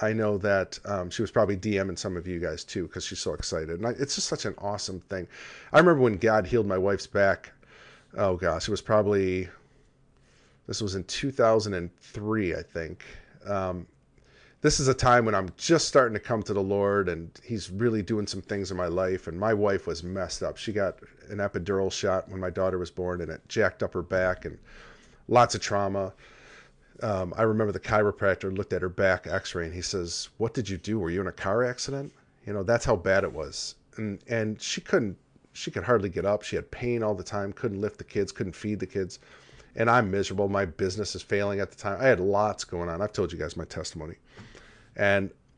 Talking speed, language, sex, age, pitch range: 220 wpm, English, male, 40-59, 95-110 Hz